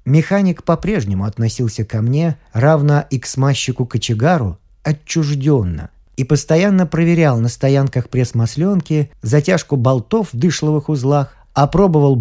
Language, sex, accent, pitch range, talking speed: Russian, male, native, 110-155 Hz, 110 wpm